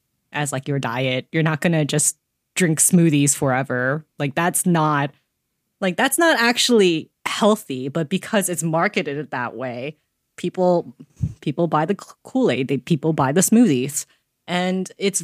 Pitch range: 150-200 Hz